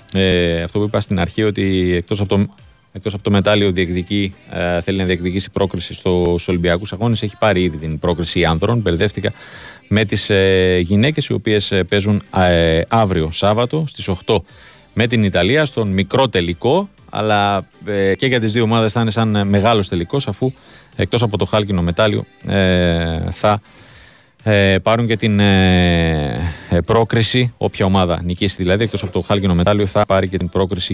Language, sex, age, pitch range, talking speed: Greek, male, 30-49, 95-115 Hz, 170 wpm